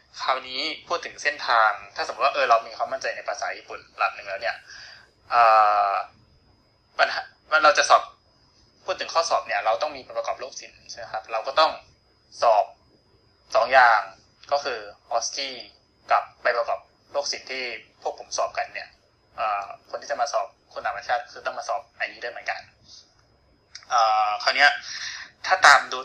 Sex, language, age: male, Thai, 20-39